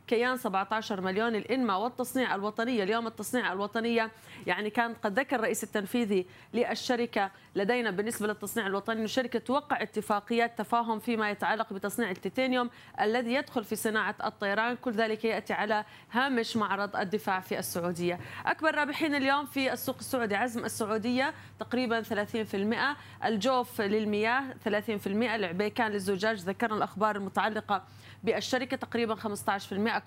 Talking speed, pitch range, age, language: 125 wpm, 205-245 Hz, 30-49, Arabic